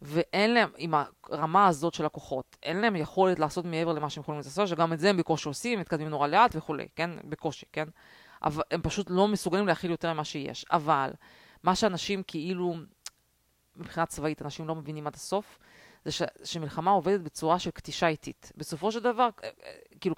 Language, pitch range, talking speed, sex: Hebrew, 160-210 Hz, 180 wpm, female